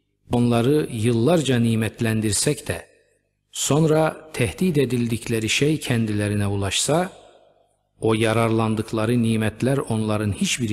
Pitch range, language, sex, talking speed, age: 105-130 Hz, Turkish, male, 85 wpm, 50-69